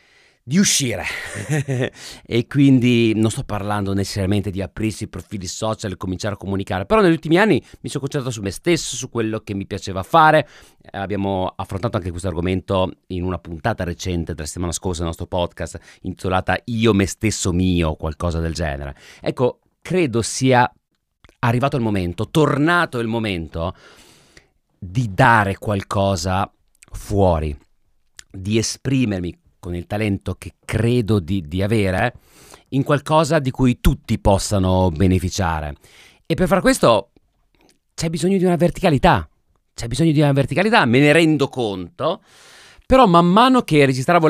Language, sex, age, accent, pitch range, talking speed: Italian, male, 40-59, native, 95-130 Hz, 150 wpm